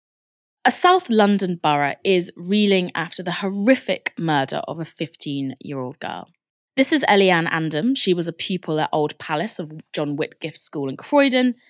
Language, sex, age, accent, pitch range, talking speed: English, female, 20-39, British, 155-220 Hz, 160 wpm